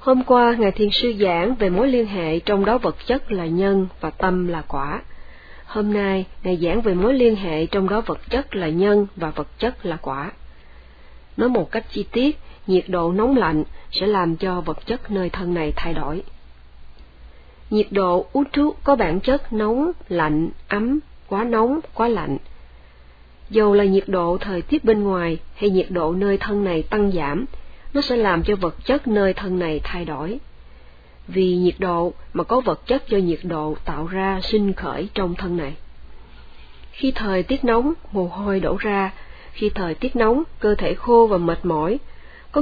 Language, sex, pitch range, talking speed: Vietnamese, female, 160-215 Hz, 190 wpm